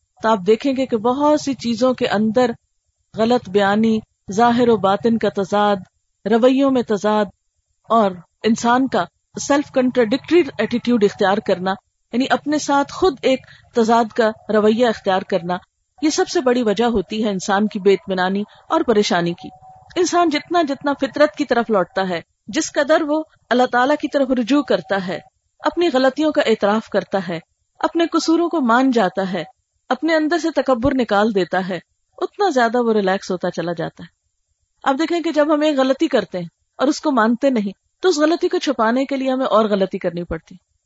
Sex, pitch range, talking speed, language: female, 200-280 Hz, 160 wpm, Urdu